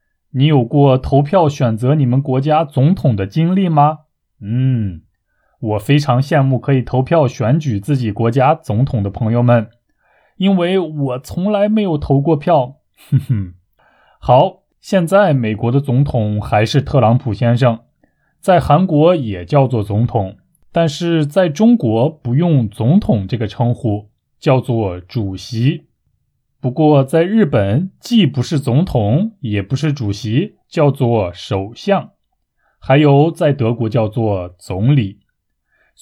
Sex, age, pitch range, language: male, 20-39, 115-160 Hz, Chinese